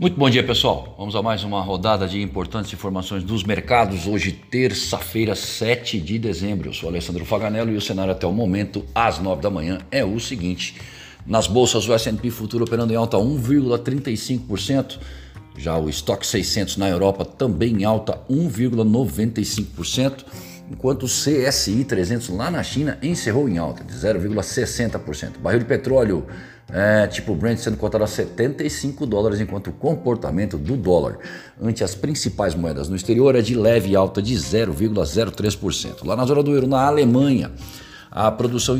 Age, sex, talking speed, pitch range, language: 50-69, male, 160 wpm, 95-120 Hz, Portuguese